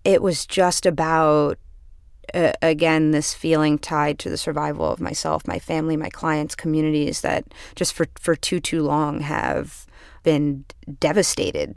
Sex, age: female, 30-49